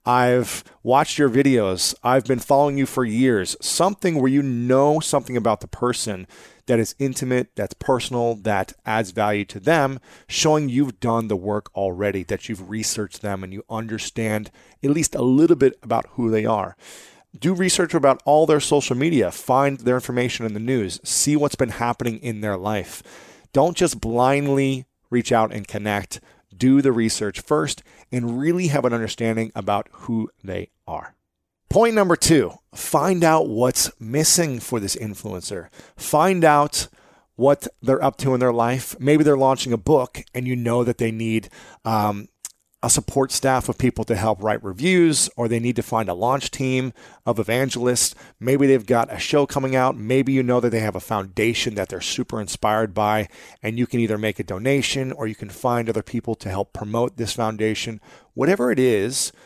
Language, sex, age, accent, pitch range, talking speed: English, male, 30-49, American, 110-140 Hz, 185 wpm